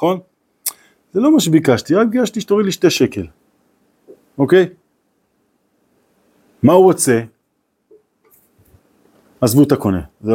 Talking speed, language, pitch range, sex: 110 wpm, Hebrew, 115-190 Hz, male